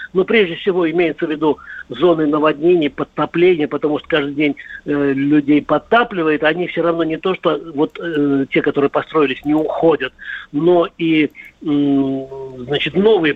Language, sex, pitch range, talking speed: Russian, male, 150-185 Hz, 145 wpm